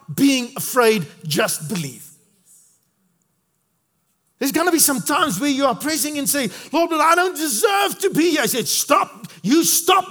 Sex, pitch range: male, 170-280 Hz